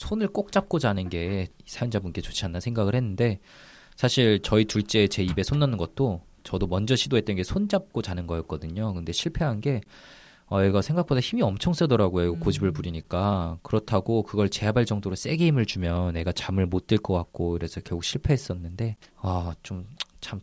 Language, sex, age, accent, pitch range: Korean, male, 20-39, native, 95-120 Hz